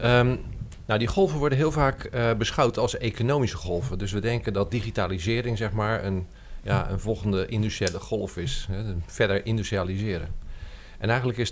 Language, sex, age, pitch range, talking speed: Dutch, male, 40-59, 95-115 Hz, 165 wpm